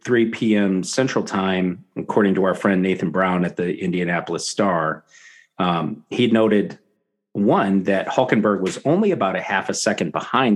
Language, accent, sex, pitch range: English, American, male, 90-110 Hz